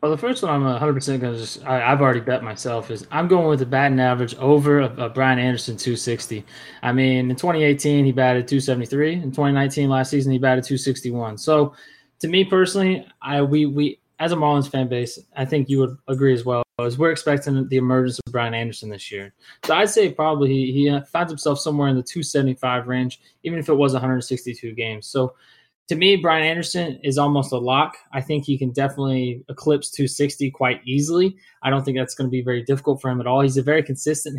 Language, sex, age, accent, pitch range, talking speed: English, male, 20-39, American, 130-150 Hz, 215 wpm